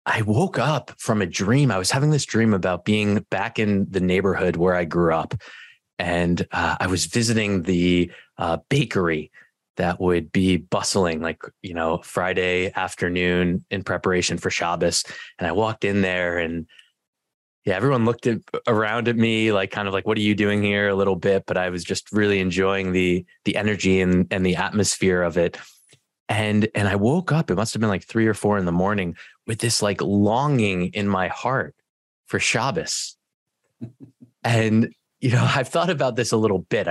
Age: 20-39